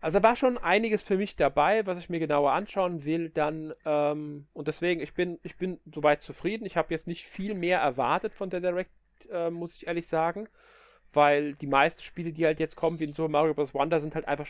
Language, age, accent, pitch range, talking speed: German, 30-49, German, 150-185 Hz, 230 wpm